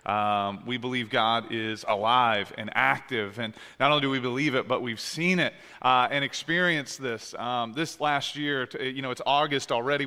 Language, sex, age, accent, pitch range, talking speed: English, male, 30-49, American, 120-145 Hz, 190 wpm